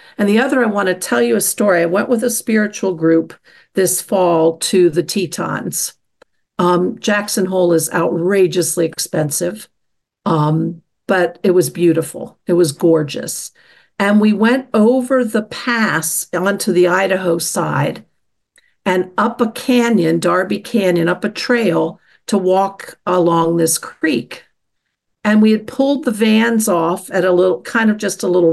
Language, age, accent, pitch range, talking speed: English, 50-69, American, 170-210 Hz, 155 wpm